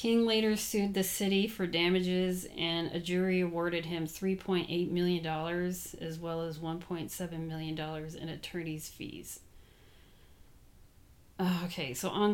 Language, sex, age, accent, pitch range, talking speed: English, female, 30-49, American, 155-180 Hz, 130 wpm